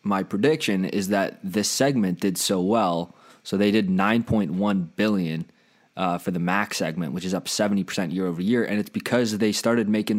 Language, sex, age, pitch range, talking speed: English, male, 20-39, 90-110 Hz, 195 wpm